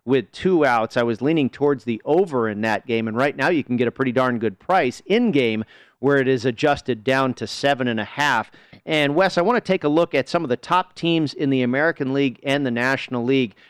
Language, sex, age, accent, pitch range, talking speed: English, male, 40-59, American, 125-155 Hz, 235 wpm